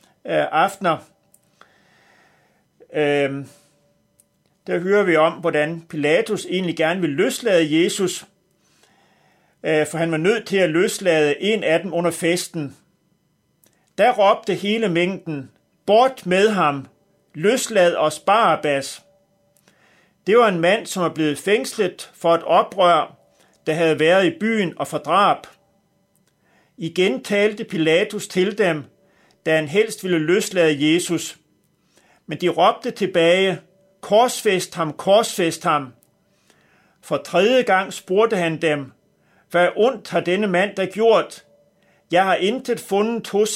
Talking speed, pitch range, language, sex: 125 wpm, 160-200 Hz, Danish, male